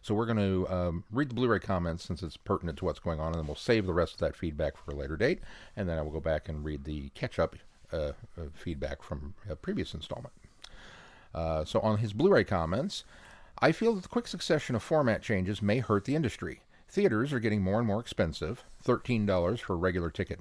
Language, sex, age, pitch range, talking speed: English, male, 50-69, 85-115 Hz, 220 wpm